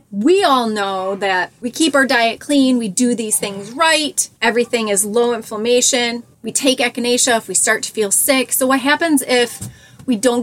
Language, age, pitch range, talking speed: English, 30-49, 210-270 Hz, 190 wpm